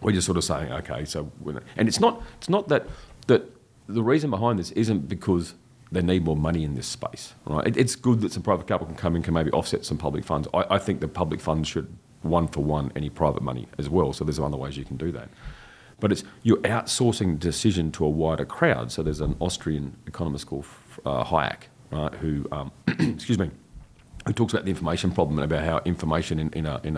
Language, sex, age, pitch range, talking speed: English, male, 40-59, 75-90 Hz, 235 wpm